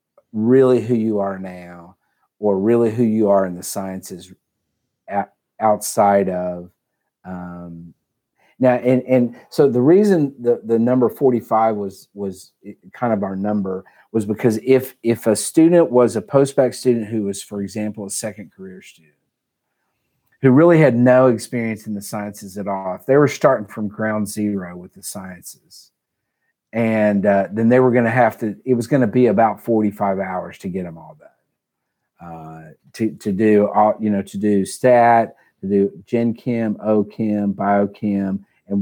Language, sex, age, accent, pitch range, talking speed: English, male, 40-59, American, 100-120 Hz, 170 wpm